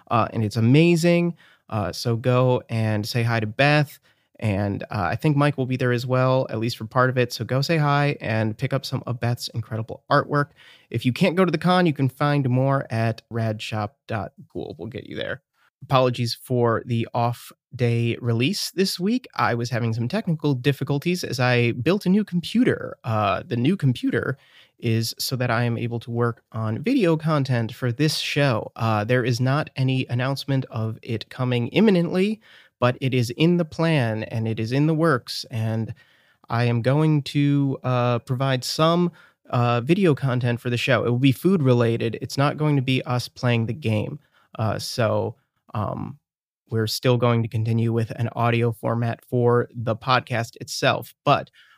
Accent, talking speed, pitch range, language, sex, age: American, 185 wpm, 115-145 Hz, English, male, 30-49